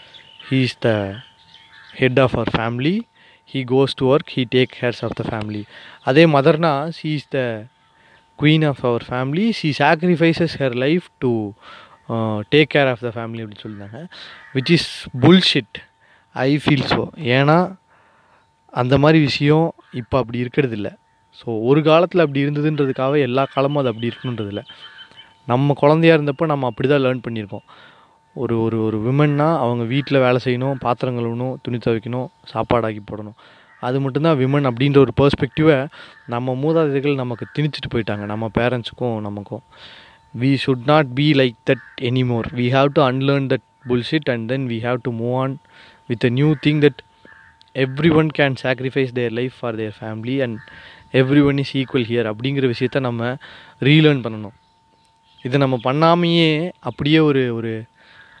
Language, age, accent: Tamil, 30-49, native